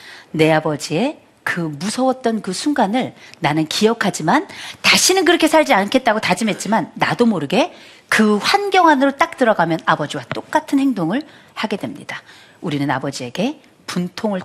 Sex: female